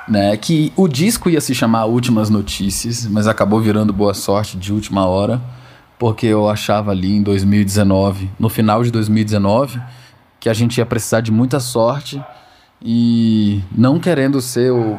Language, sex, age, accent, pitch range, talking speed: Portuguese, male, 20-39, Brazilian, 95-115 Hz, 155 wpm